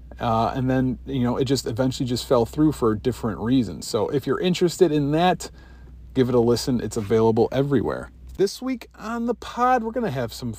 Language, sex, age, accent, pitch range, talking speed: English, male, 40-59, American, 115-155 Hz, 210 wpm